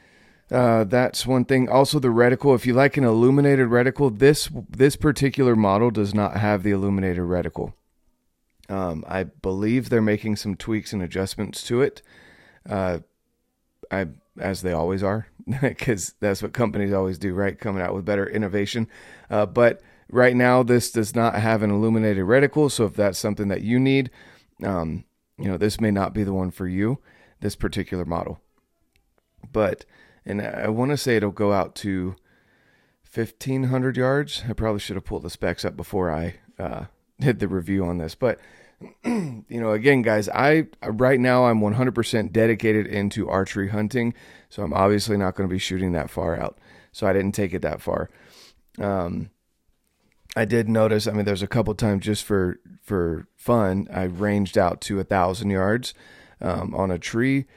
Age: 30-49